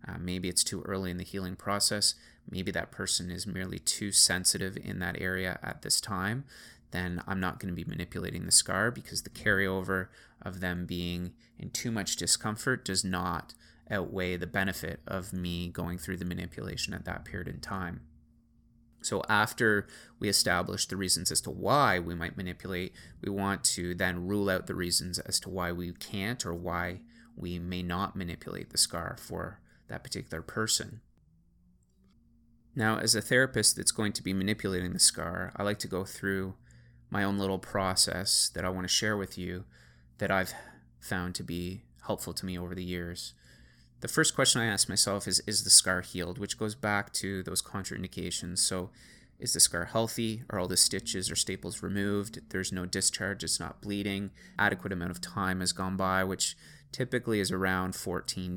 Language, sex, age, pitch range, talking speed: English, male, 20-39, 90-105 Hz, 185 wpm